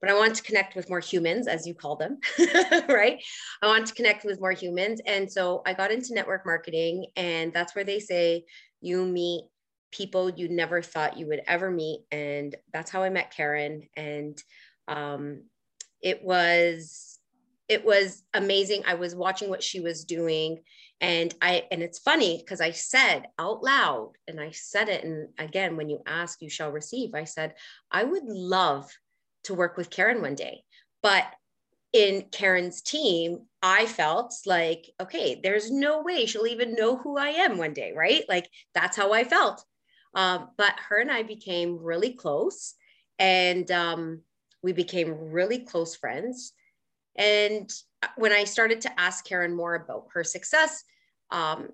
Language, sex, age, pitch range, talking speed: English, female, 30-49, 165-210 Hz, 170 wpm